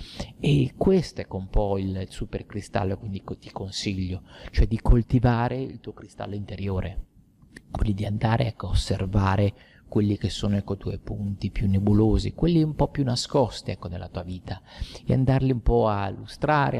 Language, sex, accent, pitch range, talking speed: Italian, male, native, 100-130 Hz, 170 wpm